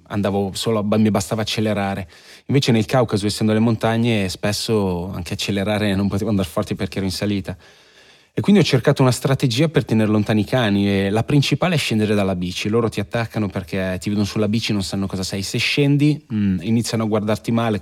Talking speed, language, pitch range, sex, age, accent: 200 wpm, Italian, 95-110 Hz, male, 20-39, native